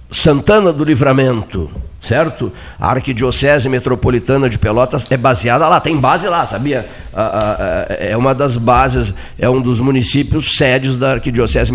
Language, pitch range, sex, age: Portuguese, 115-155 Hz, male, 60-79